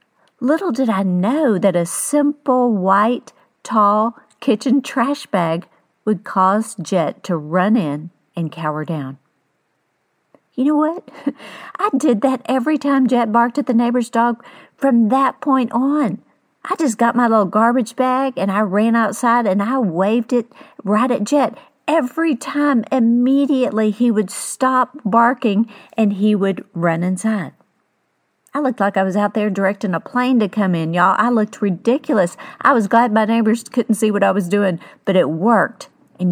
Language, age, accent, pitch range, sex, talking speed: English, 50-69, American, 185-255 Hz, female, 165 wpm